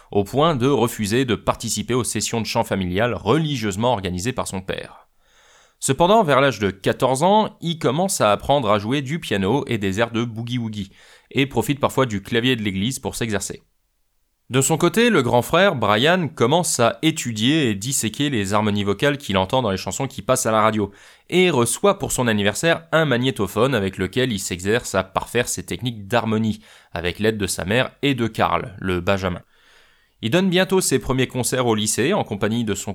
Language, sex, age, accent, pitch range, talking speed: French, male, 20-39, French, 105-145 Hz, 195 wpm